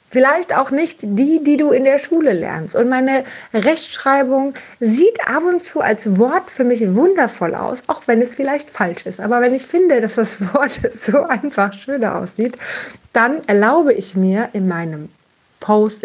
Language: German